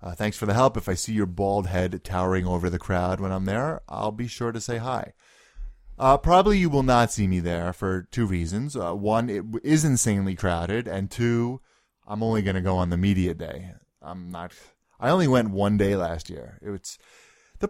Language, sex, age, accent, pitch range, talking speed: English, male, 20-39, American, 90-120 Hz, 215 wpm